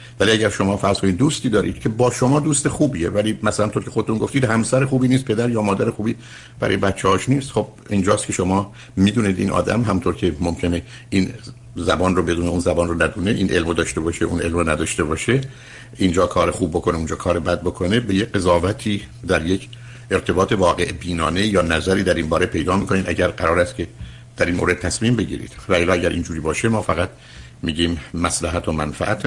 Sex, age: male, 60-79